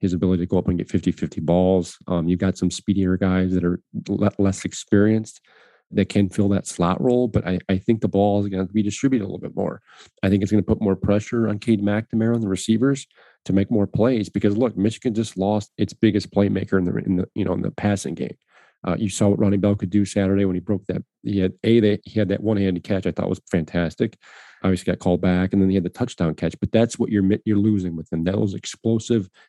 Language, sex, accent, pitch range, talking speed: English, male, American, 95-110 Hz, 250 wpm